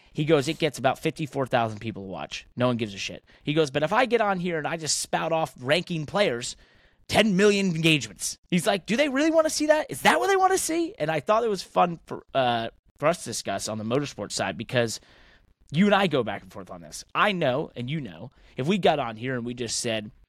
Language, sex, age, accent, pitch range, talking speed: English, male, 30-49, American, 110-150 Hz, 265 wpm